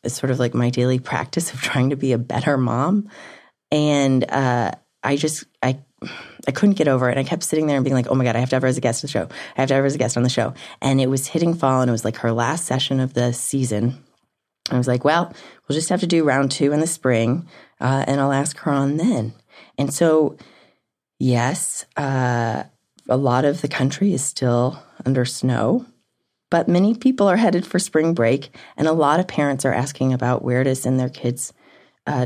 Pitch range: 125-150 Hz